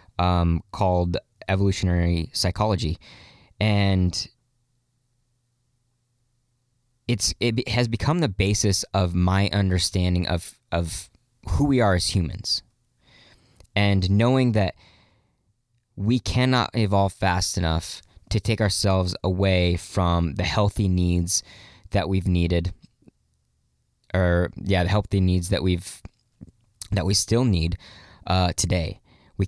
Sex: male